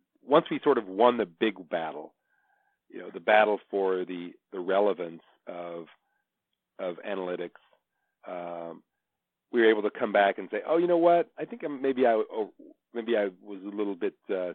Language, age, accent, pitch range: English, 40-59, American, 90-120 Hz